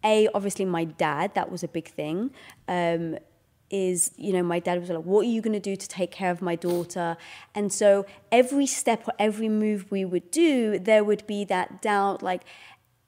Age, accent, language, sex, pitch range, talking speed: 20-39, British, English, female, 170-220 Hz, 205 wpm